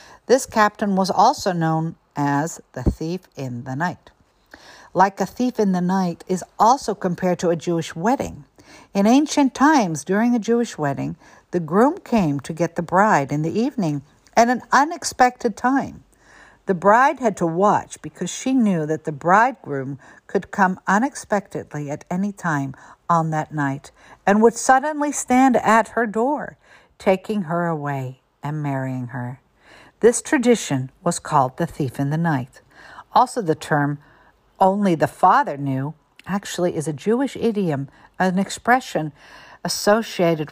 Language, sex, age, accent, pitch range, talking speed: English, female, 60-79, American, 150-215 Hz, 150 wpm